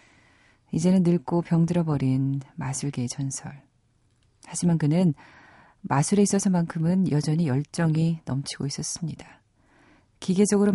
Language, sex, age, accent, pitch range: Korean, female, 40-59, native, 135-180 Hz